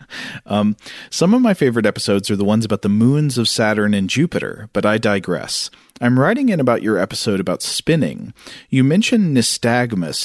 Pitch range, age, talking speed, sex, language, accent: 100-135 Hz, 40-59, 175 wpm, male, English, American